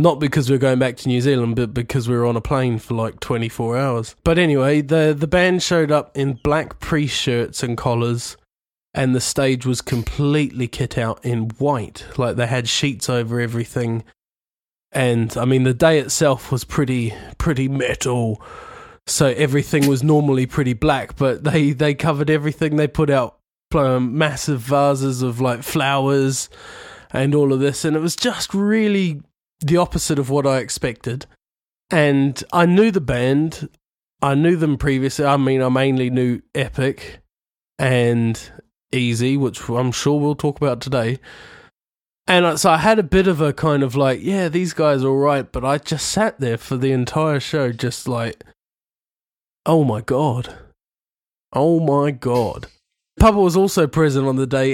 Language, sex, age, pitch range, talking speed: English, male, 20-39, 125-155 Hz, 170 wpm